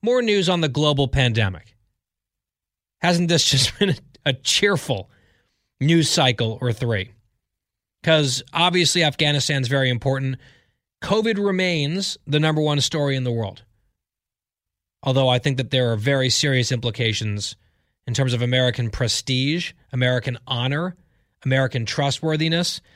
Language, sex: English, male